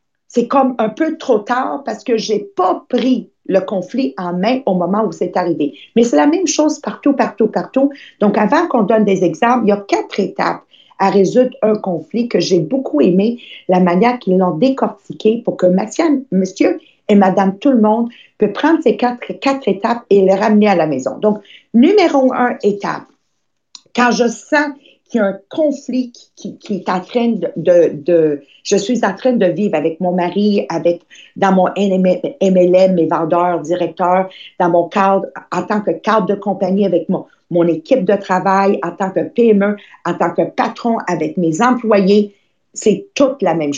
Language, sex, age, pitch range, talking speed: English, female, 50-69, 190-250 Hz, 190 wpm